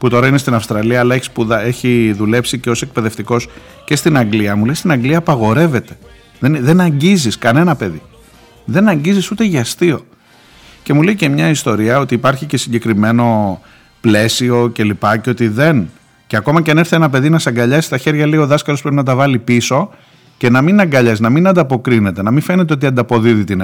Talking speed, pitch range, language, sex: 195 wpm, 115-160 Hz, Greek, male